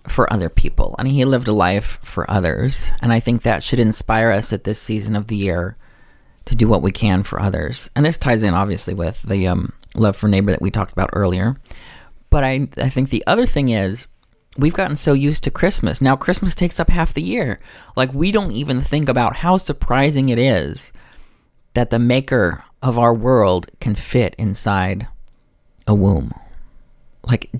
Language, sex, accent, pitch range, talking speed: English, male, American, 100-130 Hz, 195 wpm